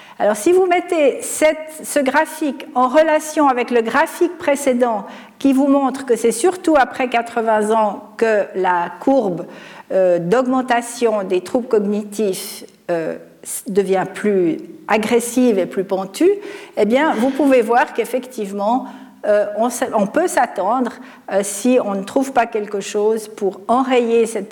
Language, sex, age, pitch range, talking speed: French, female, 50-69, 205-270 Hz, 130 wpm